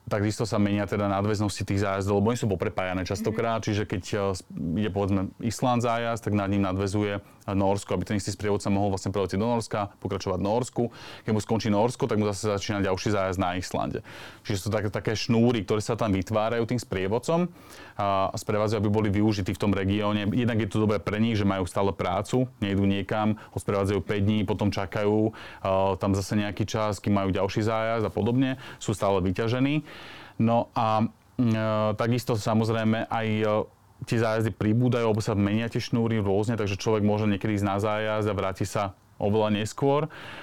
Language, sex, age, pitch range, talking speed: Slovak, male, 30-49, 100-115 Hz, 180 wpm